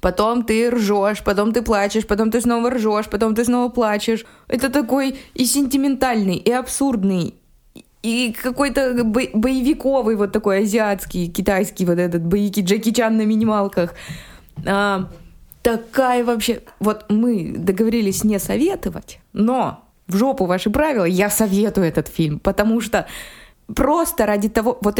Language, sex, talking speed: Russian, female, 135 wpm